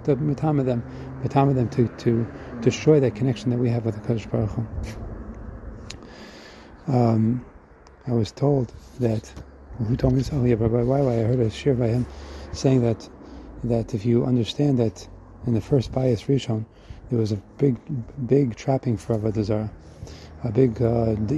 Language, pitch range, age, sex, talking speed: English, 110-130 Hz, 30-49, male, 150 wpm